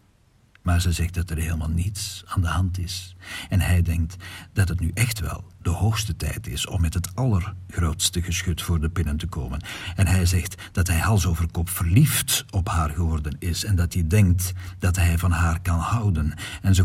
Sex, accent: male, Dutch